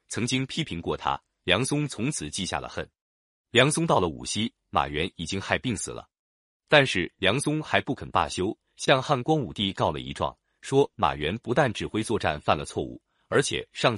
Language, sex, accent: Chinese, male, native